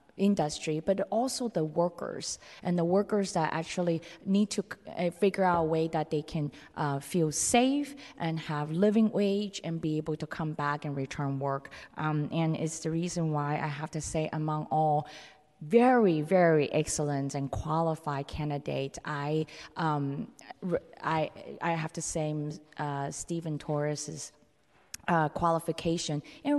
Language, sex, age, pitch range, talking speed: English, female, 20-39, 145-170 Hz, 145 wpm